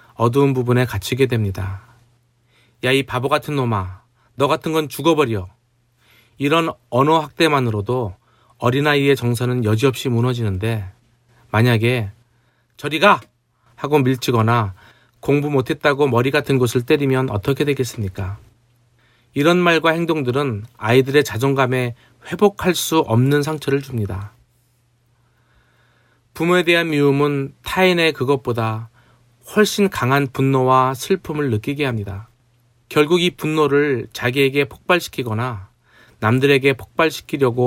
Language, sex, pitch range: Korean, male, 120-145 Hz